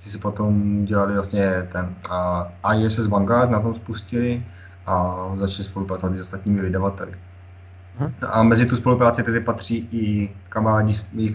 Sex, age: male, 20-39